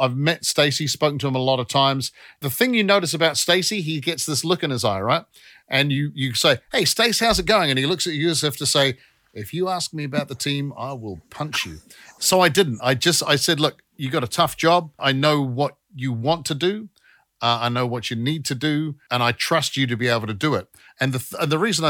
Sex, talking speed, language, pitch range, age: male, 265 wpm, English, 125-155 Hz, 50-69